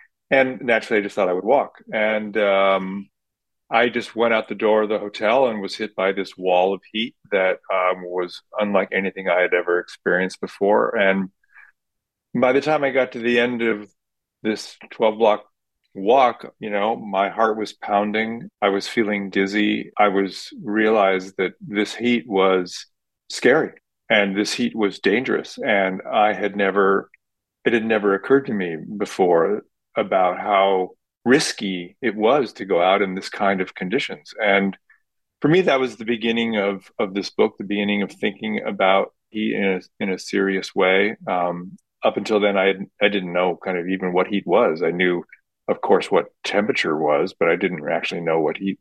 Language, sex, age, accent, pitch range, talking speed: English, male, 40-59, American, 95-110 Hz, 185 wpm